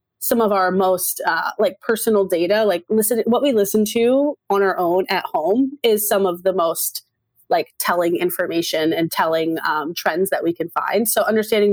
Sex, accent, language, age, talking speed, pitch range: female, American, English, 20-39, 190 wpm, 180-220 Hz